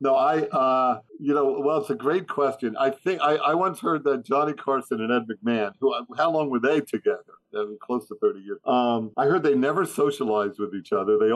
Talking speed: 235 wpm